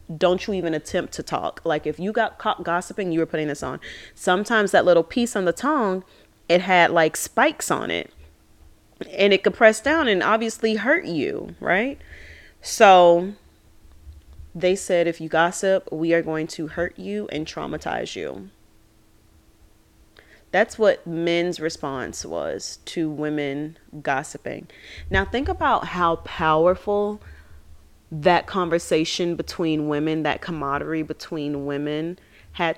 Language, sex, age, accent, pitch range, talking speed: English, female, 30-49, American, 130-180 Hz, 140 wpm